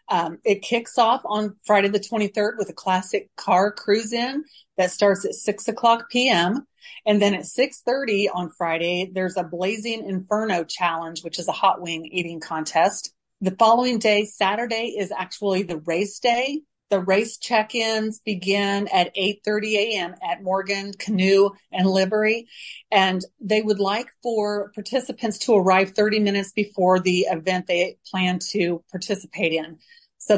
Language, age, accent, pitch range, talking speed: English, 40-59, American, 185-225 Hz, 155 wpm